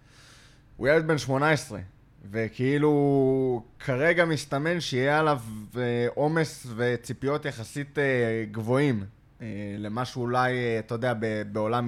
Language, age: Hebrew, 20-39